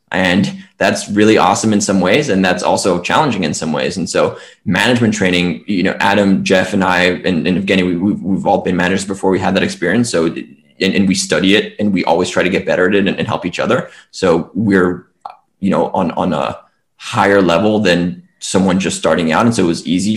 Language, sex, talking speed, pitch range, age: English, male, 225 wpm, 95-110 Hz, 20-39